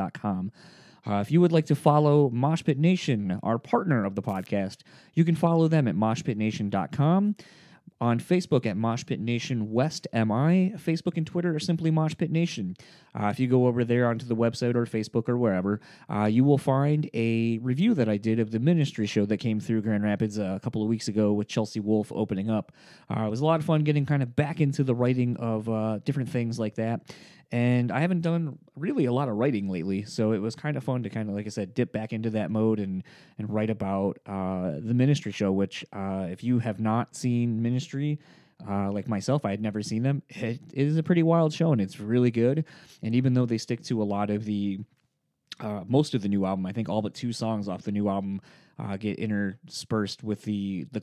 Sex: male